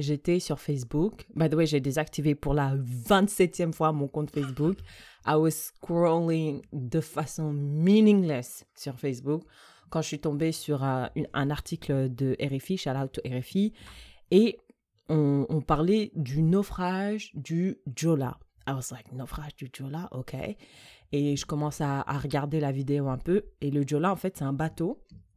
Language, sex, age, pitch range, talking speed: French, female, 20-39, 140-175 Hz, 165 wpm